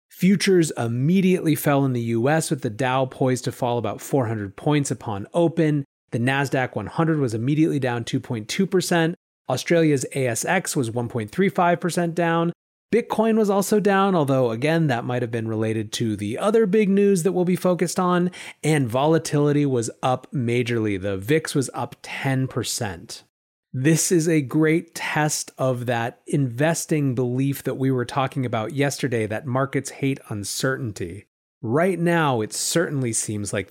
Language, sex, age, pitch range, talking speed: English, male, 30-49, 120-165 Hz, 150 wpm